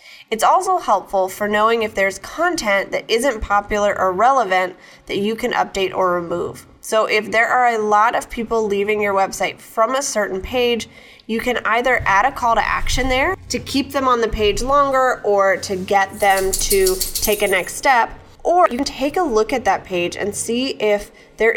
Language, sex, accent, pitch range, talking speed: English, female, American, 195-250 Hz, 200 wpm